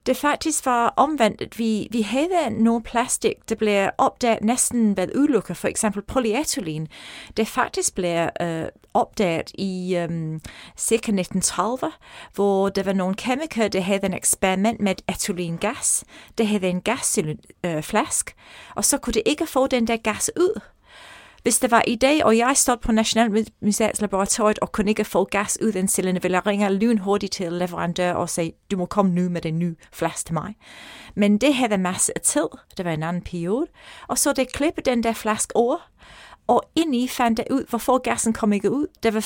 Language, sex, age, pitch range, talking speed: Danish, female, 30-49, 195-245 Hz, 180 wpm